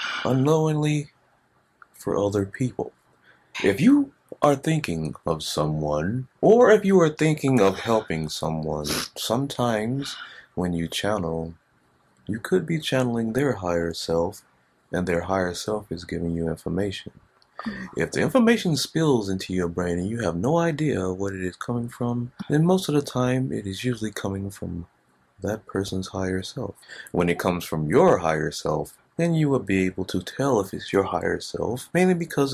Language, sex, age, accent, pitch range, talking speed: English, male, 30-49, American, 85-125 Hz, 165 wpm